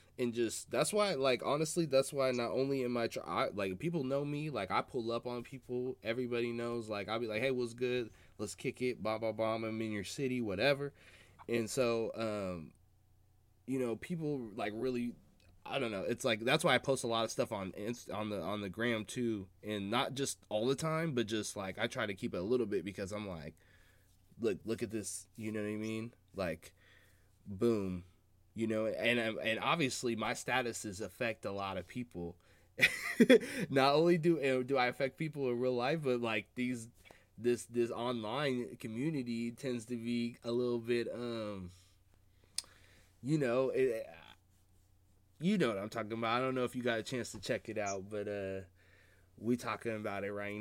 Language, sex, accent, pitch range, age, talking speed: English, male, American, 100-125 Hz, 20-39, 200 wpm